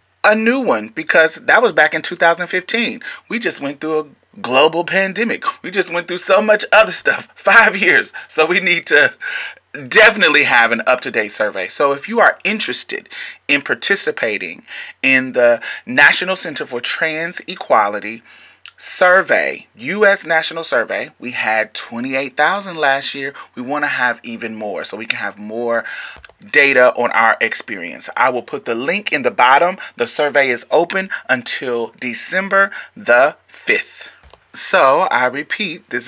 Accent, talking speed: American, 155 wpm